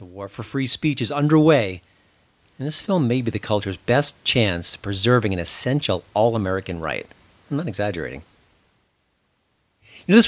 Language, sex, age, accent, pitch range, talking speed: English, male, 40-59, American, 105-145 Hz, 165 wpm